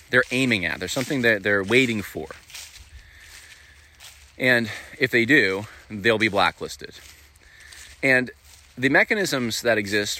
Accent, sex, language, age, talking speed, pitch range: American, male, English, 30-49, 125 wpm, 90-120 Hz